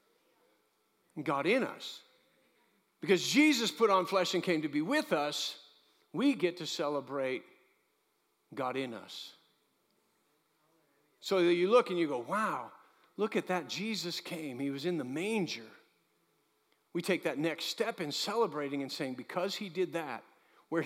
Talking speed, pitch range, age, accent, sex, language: 150 wpm, 185-265 Hz, 50-69, American, male, English